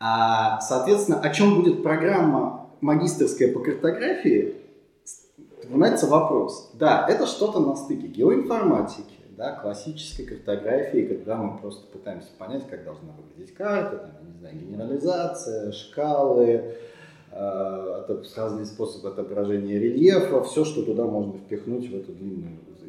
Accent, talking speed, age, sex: native, 120 wpm, 30-49, male